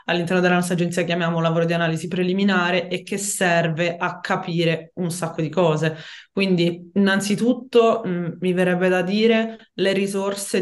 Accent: native